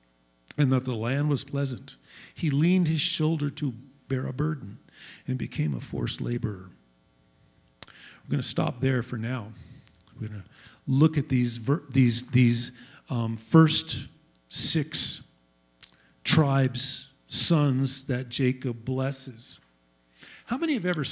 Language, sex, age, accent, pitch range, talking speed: English, male, 50-69, American, 115-155 Hz, 130 wpm